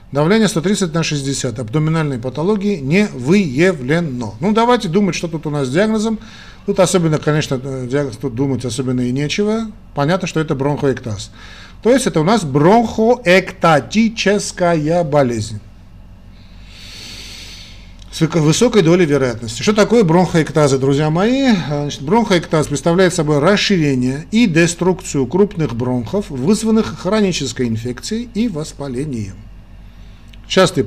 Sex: male